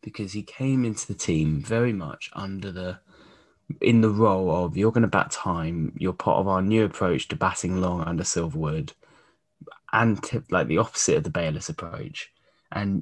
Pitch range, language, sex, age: 95-130 Hz, English, male, 10-29